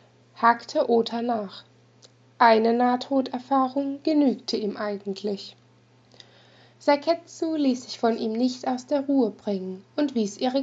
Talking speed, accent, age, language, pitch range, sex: 120 wpm, German, 20-39, German, 215-265 Hz, female